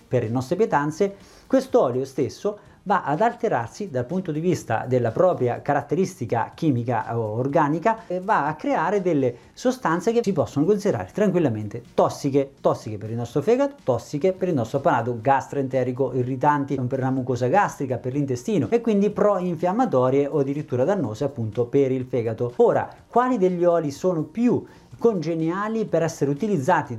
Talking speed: 155 wpm